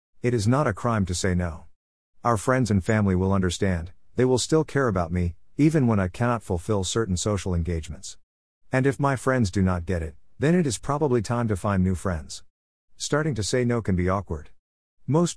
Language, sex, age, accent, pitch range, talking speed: Bengali, male, 50-69, American, 90-120 Hz, 205 wpm